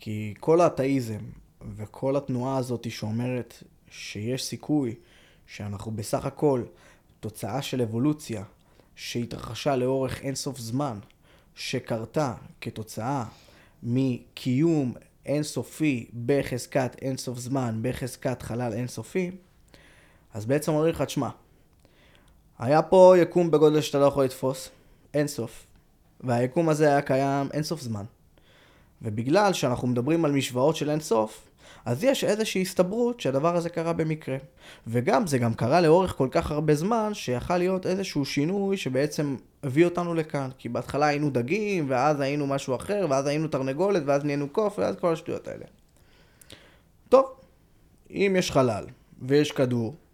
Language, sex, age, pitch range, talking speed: Hebrew, male, 20-39, 120-155 Hz, 125 wpm